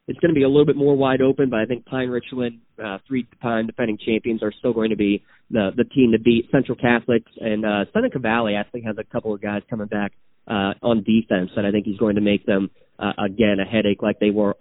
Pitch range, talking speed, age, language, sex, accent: 105-120 Hz, 255 wpm, 30-49, English, male, American